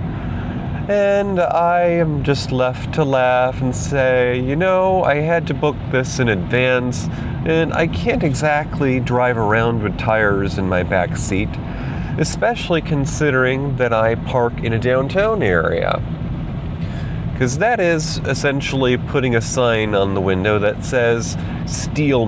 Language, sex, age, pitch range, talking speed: English, male, 30-49, 115-150 Hz, 140 wpm